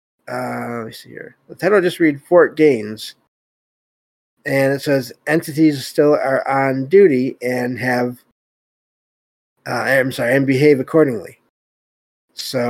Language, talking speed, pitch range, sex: English, 130 wpm, 120-145 Hz, male